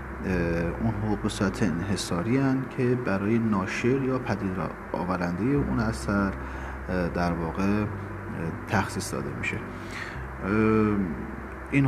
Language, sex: Persian, male